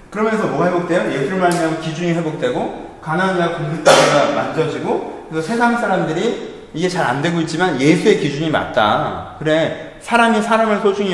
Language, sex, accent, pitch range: Korean, male, native, 155-195 Hz